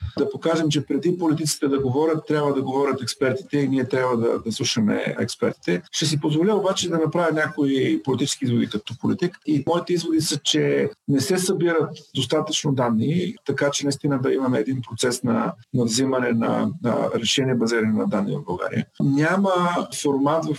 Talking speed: 175 wpm